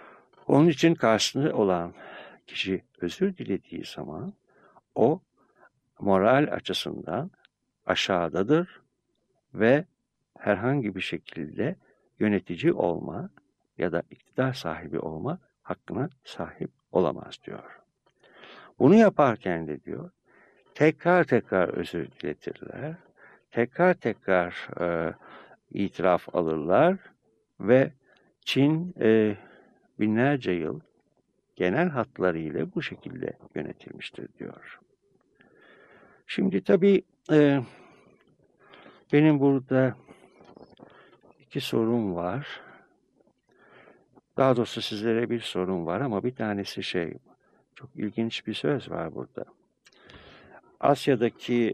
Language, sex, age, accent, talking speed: Turkish, male, 60-79, native, 90 wpm